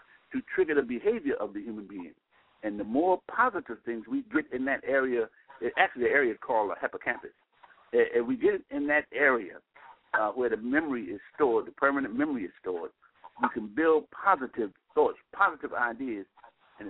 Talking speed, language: 180 wpm, English